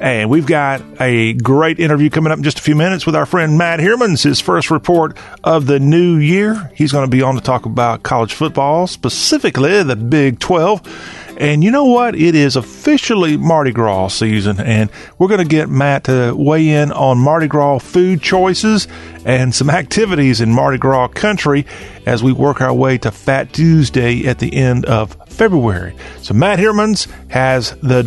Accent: American